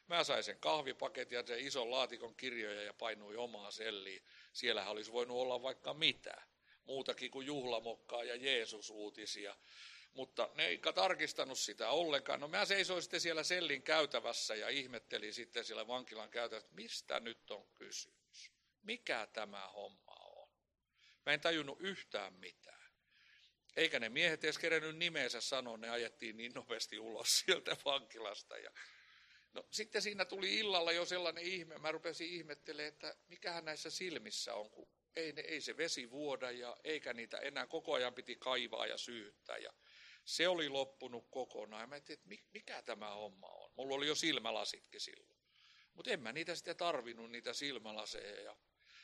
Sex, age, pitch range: male, 60-79, 120-180 Hz